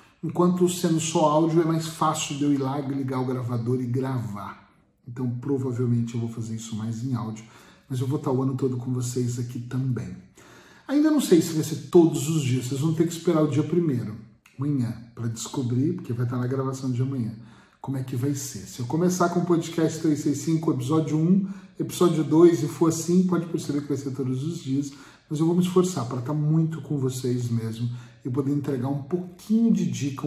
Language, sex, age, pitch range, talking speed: Portuguese, male, 40-59, 130-160 Hz, 215 wpm